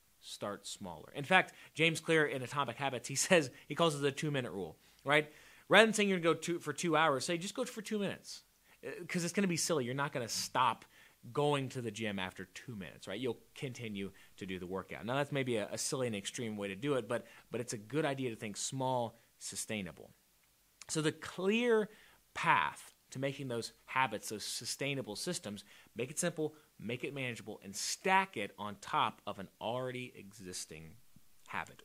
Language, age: English, 30-49